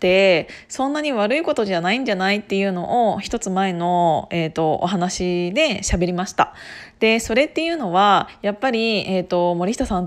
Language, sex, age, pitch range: Japanese, female, 20-39, 185-270 Hz